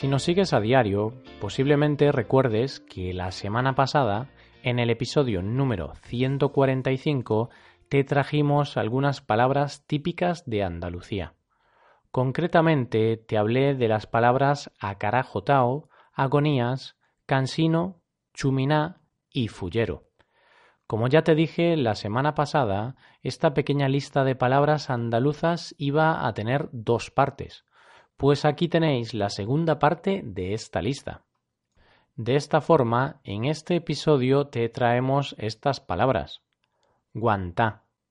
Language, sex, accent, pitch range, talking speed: Spanish, male, Spanish, 115-145 Hz, 115 wpm